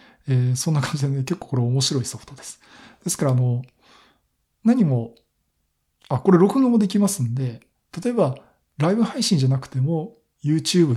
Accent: native